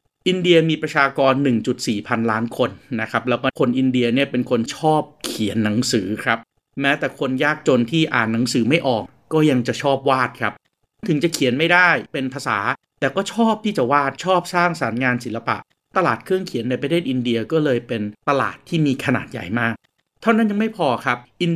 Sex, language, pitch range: male, Thai, 120-160 Hz